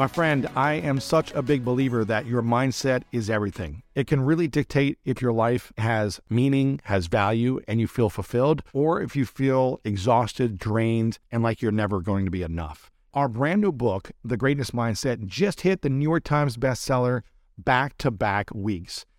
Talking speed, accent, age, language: 180 wpm, American, 50-69, English